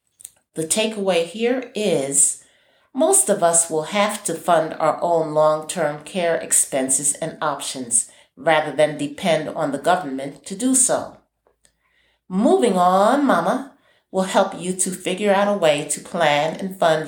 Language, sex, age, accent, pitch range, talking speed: English, female, 40-59, American, 155-225 Hz, 150 wpm